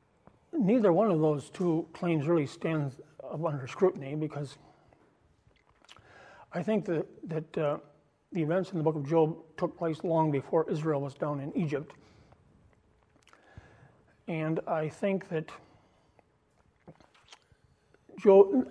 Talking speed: 120 wpm